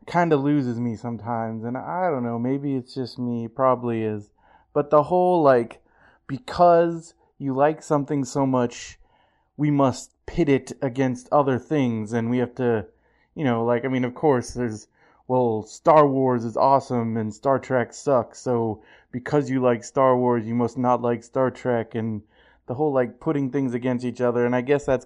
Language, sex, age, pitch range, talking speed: English, male, 20-39, 120-140 Hz, 185 wpm